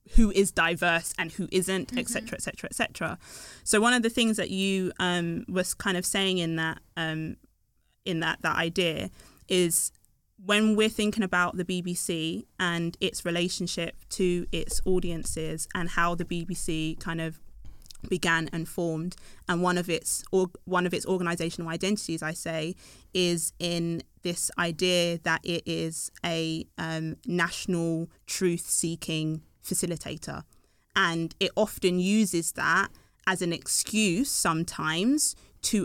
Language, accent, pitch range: English, British, 165-185 Hz